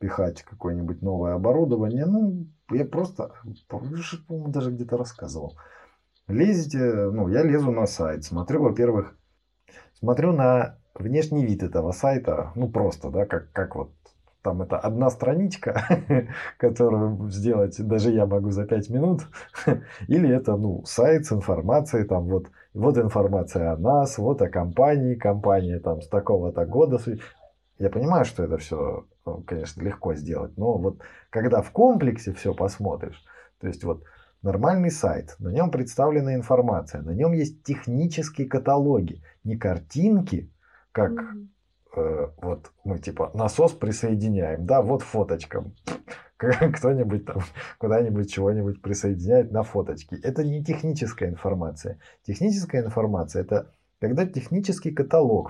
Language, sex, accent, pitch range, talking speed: Russian, male, native, 100-145 Hz, 130 wpm